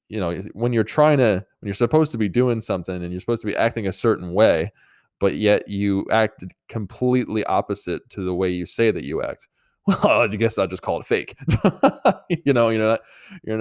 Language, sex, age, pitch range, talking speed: English, male, 20-39, 95-120 Hz, 215 wpm